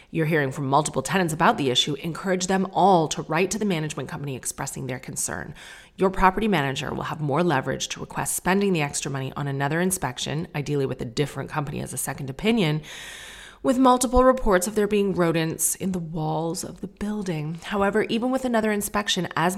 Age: 30-49